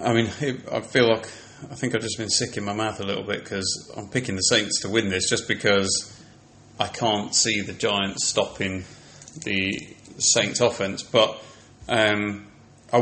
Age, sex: 30-49, male